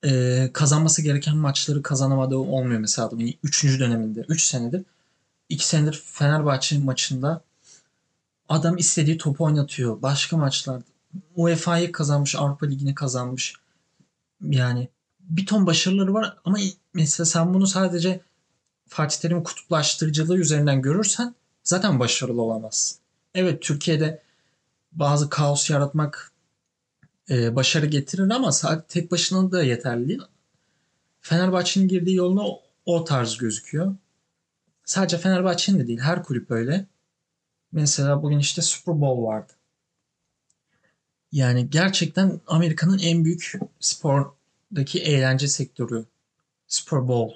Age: 30-49